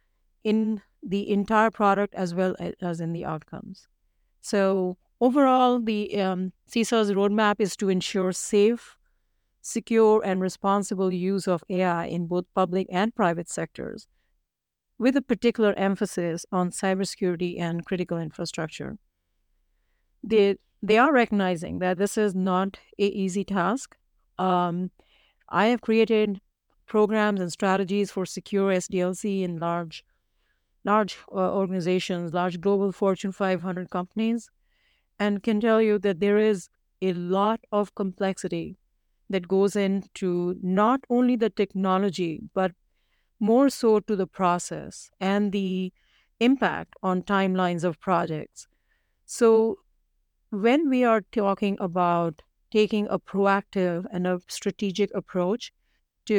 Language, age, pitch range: English, 50-69, 180-210 Hz